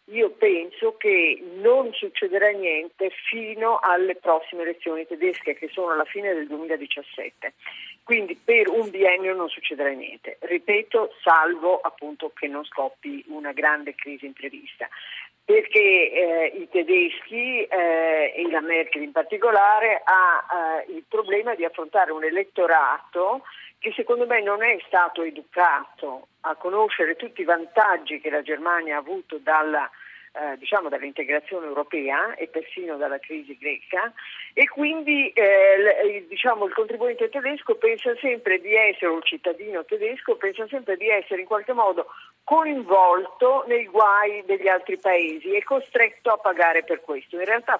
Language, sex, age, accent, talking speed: Italian, female, 50-69, native, 145 wpm